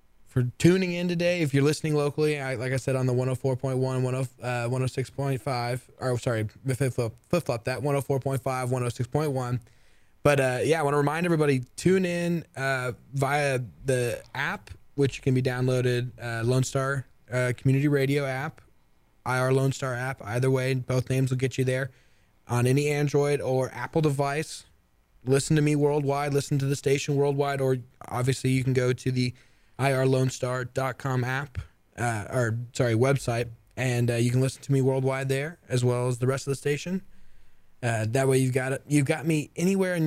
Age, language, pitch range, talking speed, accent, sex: 20-39, English, 125-145 Hz, 170 wpm, American, male